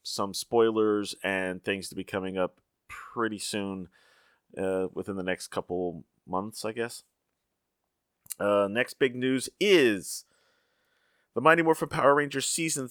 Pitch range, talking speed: 100-130 Hz, 135 wpm